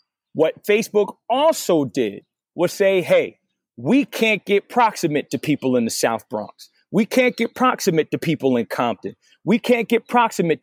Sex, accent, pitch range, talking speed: male, American, 155-205 Hz, 165 wpm